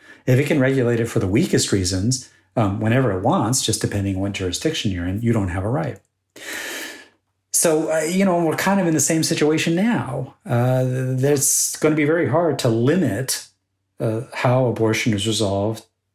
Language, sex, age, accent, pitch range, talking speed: English, male, 40-59, American, 110-145 Hz, 190 wpm